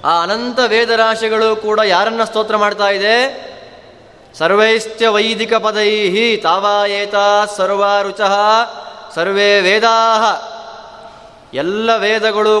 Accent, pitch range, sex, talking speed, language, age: native, 175-225 Hz, male, 95 wpm, Kannada, 20-39